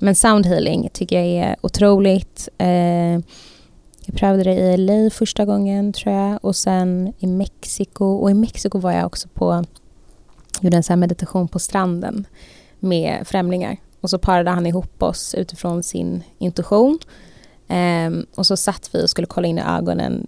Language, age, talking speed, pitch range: Swedish, 20-39, 165 wpm, 175-195 Hz